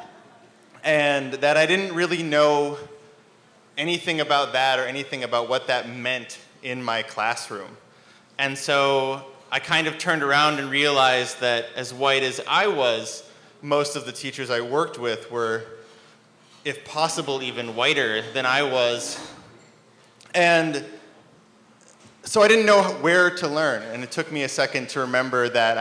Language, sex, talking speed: English, male, 150 wpm